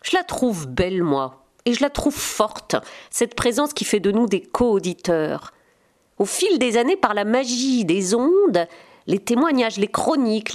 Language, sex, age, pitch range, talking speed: French, female, 40-59, 210-285 Hz, 175 wpm